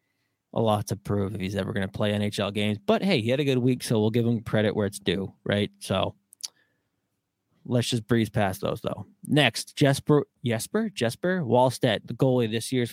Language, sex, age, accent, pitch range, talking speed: English, male, 20-39, American, 105-125 Hz, 210 wpm